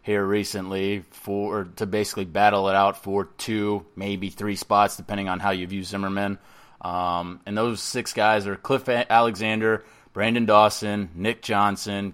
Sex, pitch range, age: male, 100-120 Hz, 20-39